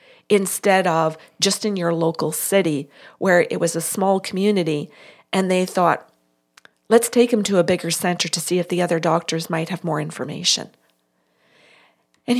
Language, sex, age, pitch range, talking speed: English, female, 40-59, 145-210 Hz, 165 wpm